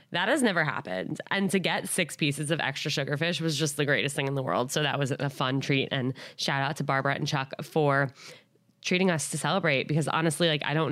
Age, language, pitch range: 20-39, English, 135-160 Hz